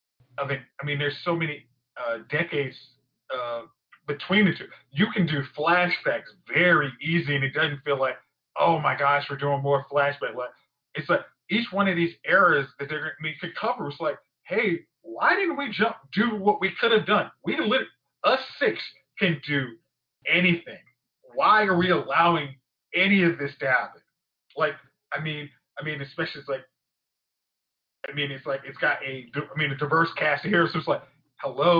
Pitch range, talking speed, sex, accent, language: 140-175 Hz, 190 wpm, male, American, English